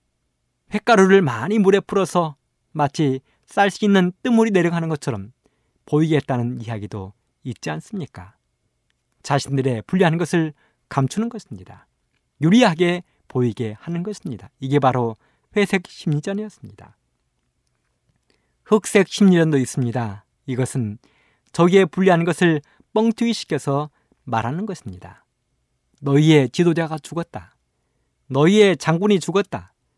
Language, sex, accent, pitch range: Korean, male, native, 120-190 Hz